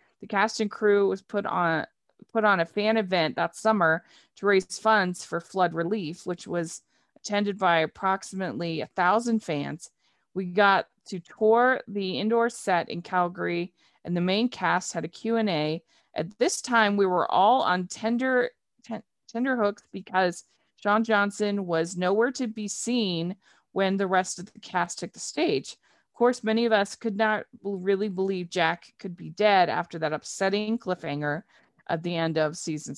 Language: English